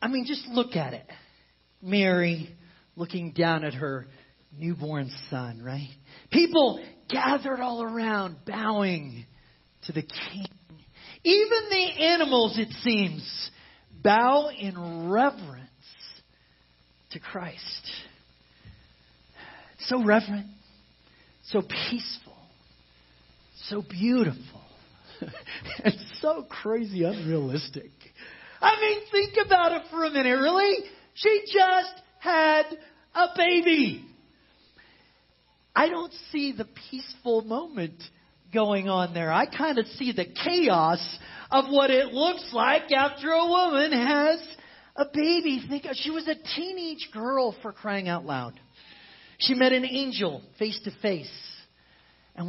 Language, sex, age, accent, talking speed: English, male, 40-59, American, 115 wpm